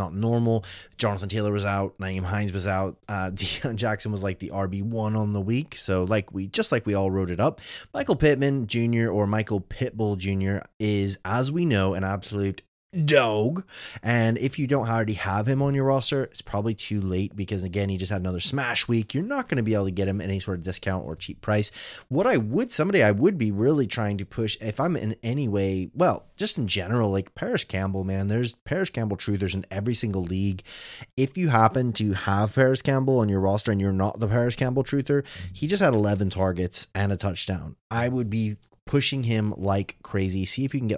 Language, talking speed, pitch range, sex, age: English, 220 wpm, 95-120 Hz, male, 30-49